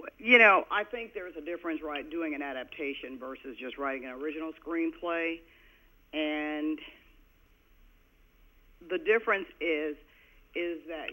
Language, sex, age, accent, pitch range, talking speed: English, female, 50-69, American, 125-165 Hz, 125 wpm